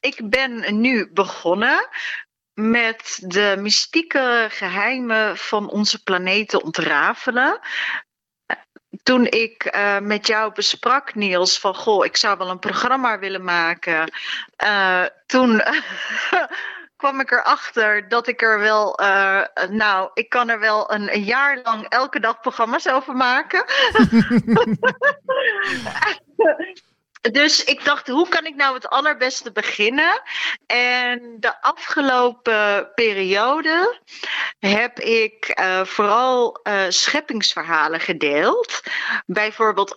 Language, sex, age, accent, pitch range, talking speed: Dutch, female, 40-59, Dutch, 195-250 Hz, 110 wpm